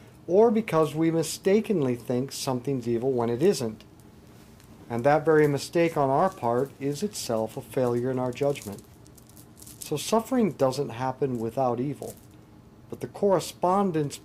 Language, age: English, 50-69